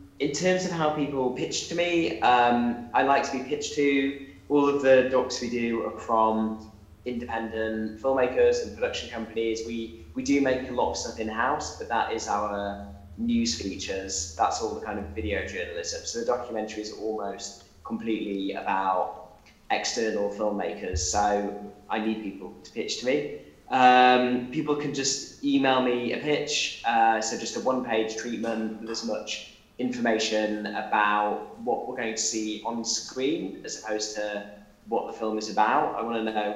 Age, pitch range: 10-29, 110-135 Hz